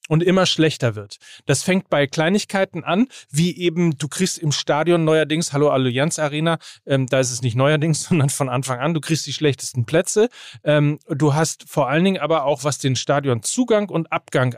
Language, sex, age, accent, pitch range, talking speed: German, male, 40-59, German, 145-180 Hz, 195 wpm